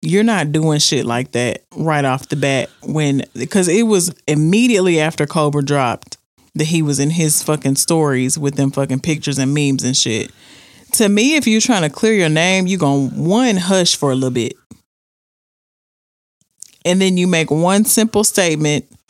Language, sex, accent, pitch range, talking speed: English, male, American, 140-180 Hz, 180 wpm